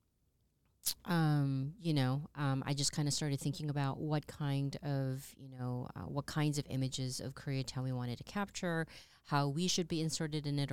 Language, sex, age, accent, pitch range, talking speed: English, female, 30-49, American, 135-160 Hz, 190 wpm